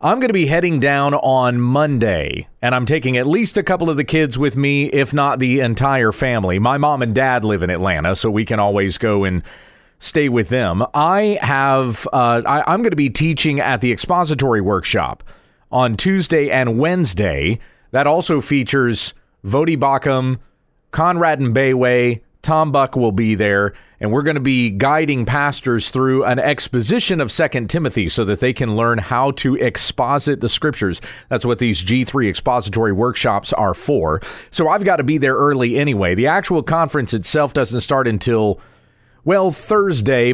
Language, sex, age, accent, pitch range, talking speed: English, male, 30-49, American, 120-150 Hz, 180 wpm